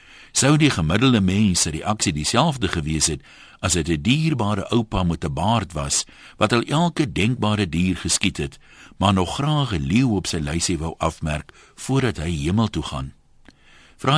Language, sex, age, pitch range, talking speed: Dutch, male, 60-79, 85-135 Hz, 175 wpm